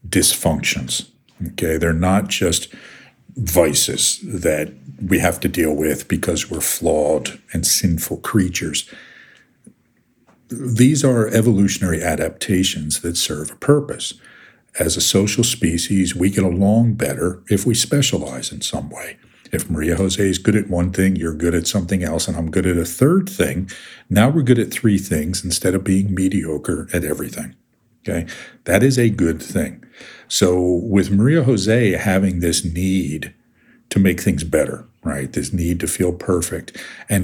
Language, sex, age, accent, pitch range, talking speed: English, male, 50-69, American, 85-110 Hz, 155 wpm